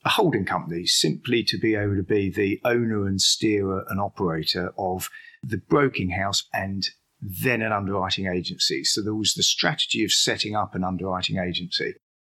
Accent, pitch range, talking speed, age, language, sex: British, 95-120 Hz, 170 wpm, 40-59, English, male